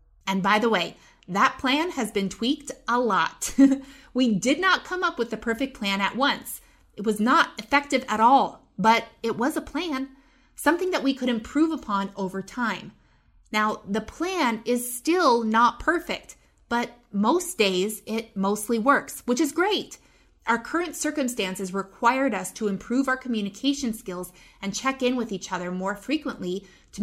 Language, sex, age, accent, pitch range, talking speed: English, female, 30-49, American, 200-265 Hz, 170 wpm